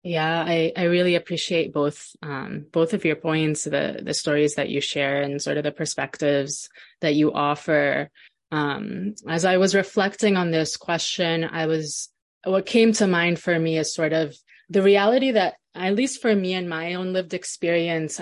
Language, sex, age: English, female, 20-39